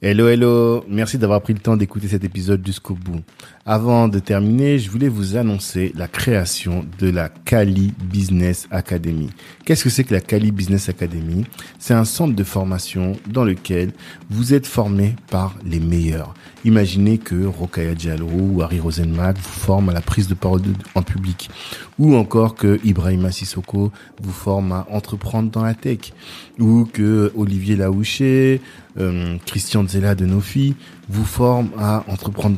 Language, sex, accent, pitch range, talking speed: French, male, French, 90-110 Hz, 160 wpm